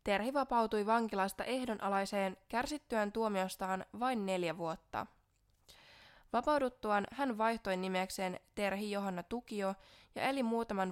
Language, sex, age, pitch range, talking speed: Finnish, female, 20-39, 185-230 Hz, 105 wpm